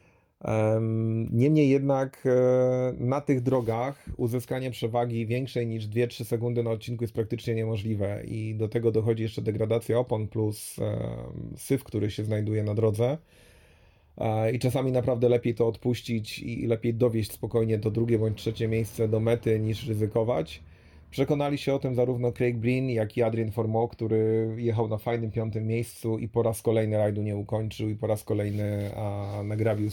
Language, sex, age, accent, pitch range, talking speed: Polish, male, 30-49, native, 105-120 Hz, 155 wpm